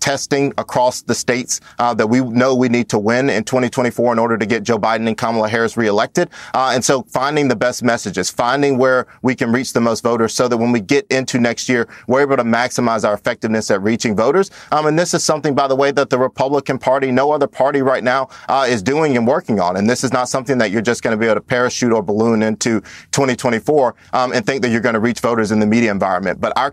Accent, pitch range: American, 115-130 Hz